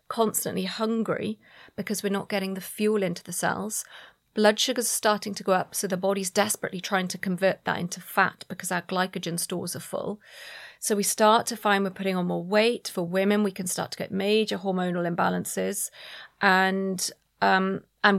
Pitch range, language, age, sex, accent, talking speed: 190-220 Hz, English, 30-49, female, British, 185 wpm